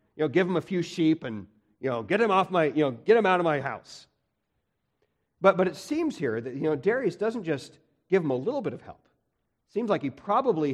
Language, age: English, 40-59